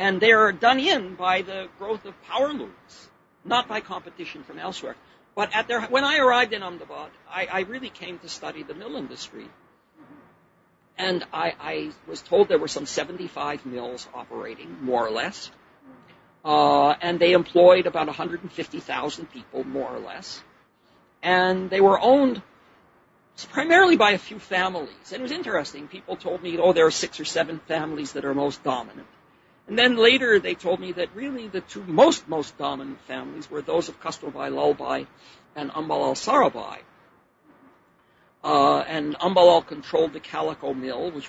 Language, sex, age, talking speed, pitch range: English, male, 50-69, 165 wpm, 155-215 Hz